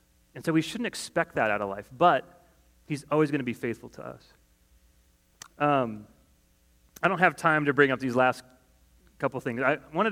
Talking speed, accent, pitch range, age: 190 wpm, American, 120-170 Hz, 30-49